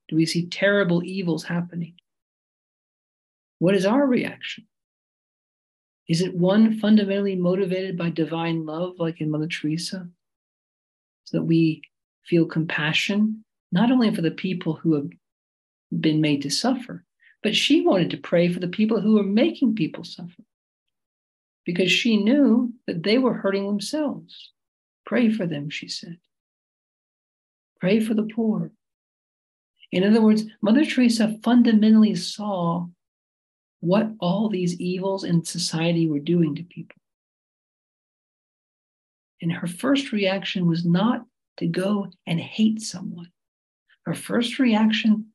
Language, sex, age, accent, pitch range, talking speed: English, male, 50-69, American, 170-220 Hz, 130 wpm